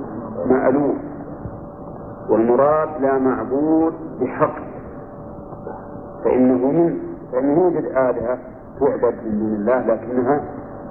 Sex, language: male, Arabic